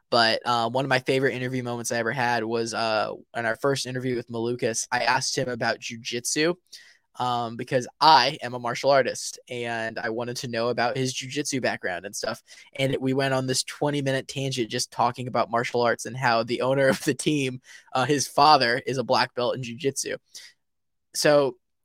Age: 10-29